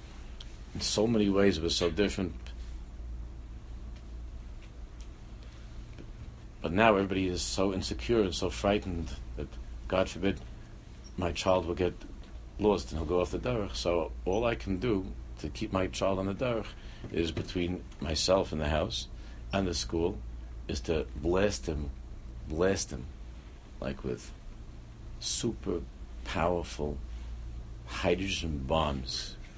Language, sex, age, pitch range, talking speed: English, male, 50-69, 65-95 Hz, 130 wpm